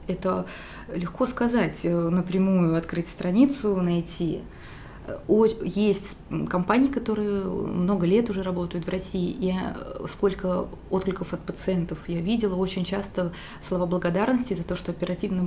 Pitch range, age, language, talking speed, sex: 175-200 Hz, 20-39, Russian, 120 wpm, female